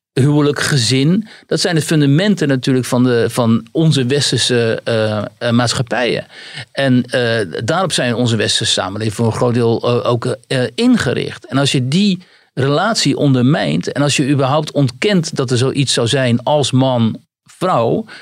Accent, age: Dutch, 50-69